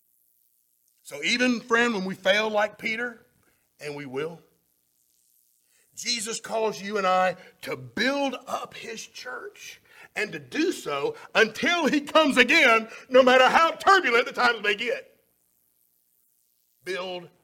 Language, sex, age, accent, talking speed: English, male, 50-69, American, 130 wpm